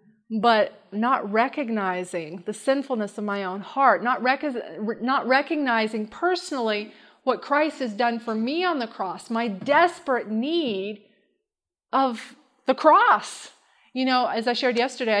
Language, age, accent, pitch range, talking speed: English, 30-49, American, 215-270 Hz, 135 wpm